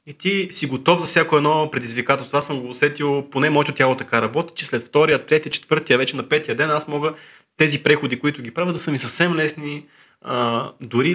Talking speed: 210 wpm